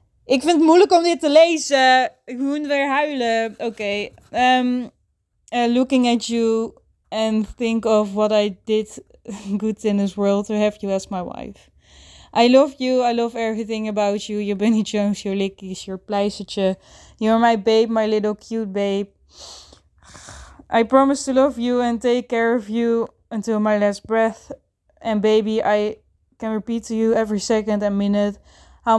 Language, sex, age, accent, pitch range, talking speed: Dutch, female, 20-39, Dutch, 205-235 Hz, 165 wpm